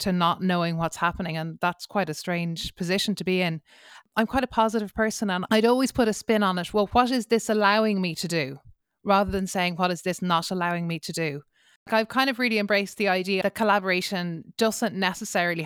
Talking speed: 220 wpm